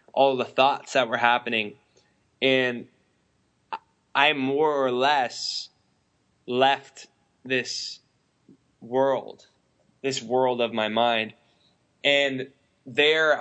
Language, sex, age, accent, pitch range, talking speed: English, male, 10-29, American, 115-130 Hz, 95 wpm